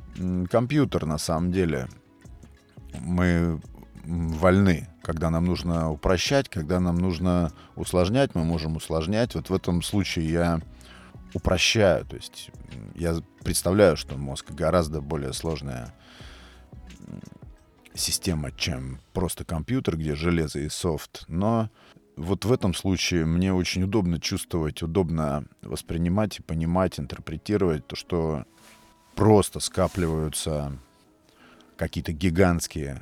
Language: Russian